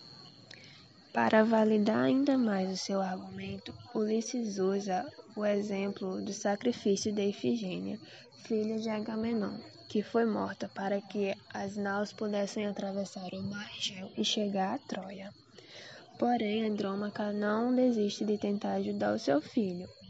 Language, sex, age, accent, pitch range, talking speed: Portuguese, female, 10-29, Brazilian, 190-220 Hz, 130 wpm